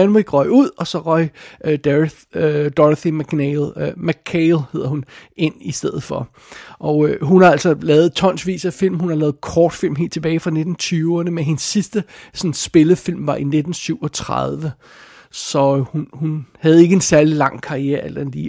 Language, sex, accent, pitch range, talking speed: Danish, male, native, 145-185 Hz, 175 wpm